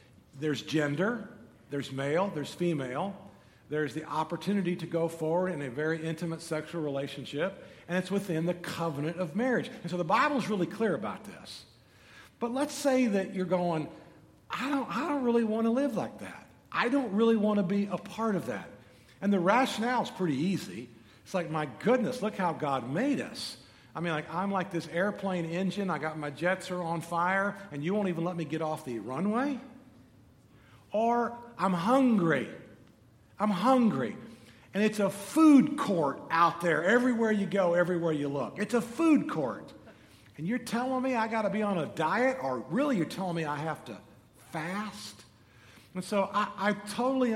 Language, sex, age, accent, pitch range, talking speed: English, male, 50-69, American, 150-215 Hz, 185 wpm